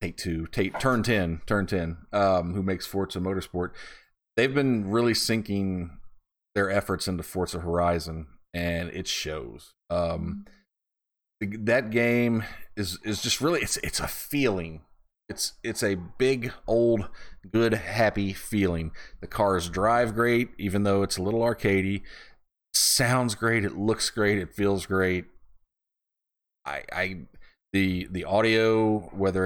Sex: male